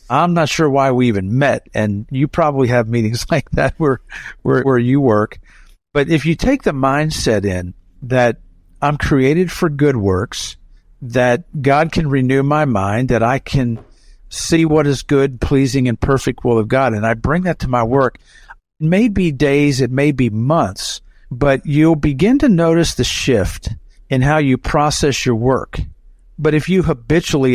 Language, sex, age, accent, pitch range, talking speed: English, male, 50-69, American, 115-145 Hz, 180 wpm